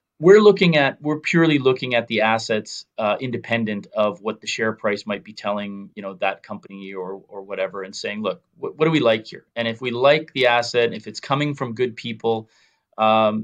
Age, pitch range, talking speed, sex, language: 30-49, 110-130 Hz, 215 wpm, male, English